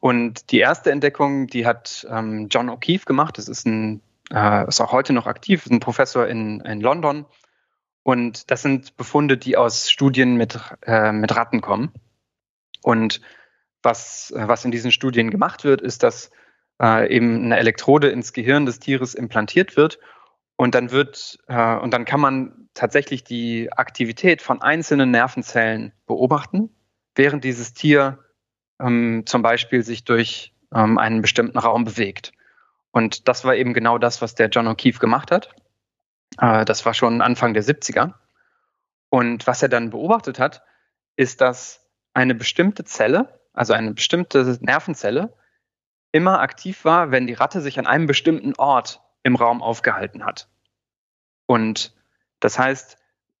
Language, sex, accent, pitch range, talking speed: German, male, German, 115-135 Hz, 145 wpm